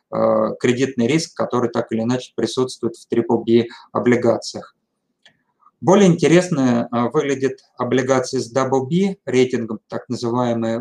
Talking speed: 105 wpm